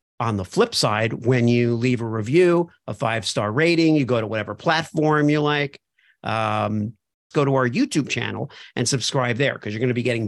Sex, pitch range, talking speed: male, 120-160 Hz, 200 wpm